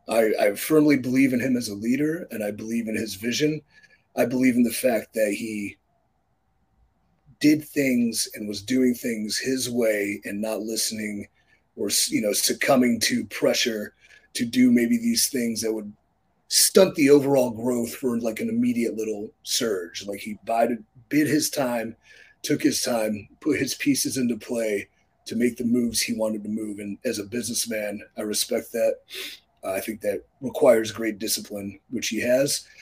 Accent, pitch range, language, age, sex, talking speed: American, 110-130 Hz, English, 30-49, male, 170 wpm